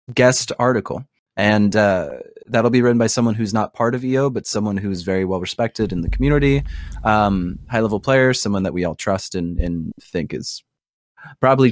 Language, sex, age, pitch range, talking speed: English, male, 20-39, 95-120 Hz, 190 wpm